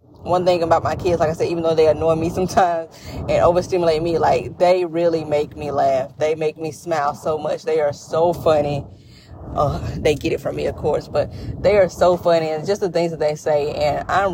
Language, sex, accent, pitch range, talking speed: English, female, American, 150-180 Hz, 230 wpm